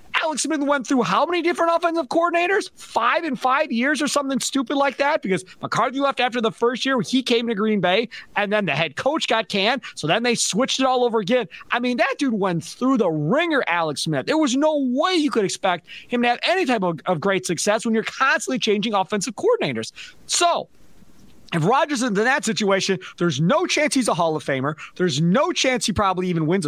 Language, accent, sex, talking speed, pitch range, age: English, American, male, 225 wpm, 200-280 Hz, 30-49